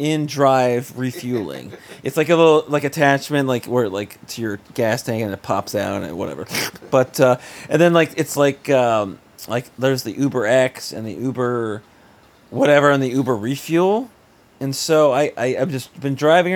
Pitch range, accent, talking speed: 120-155 Hz, American, 180 wpm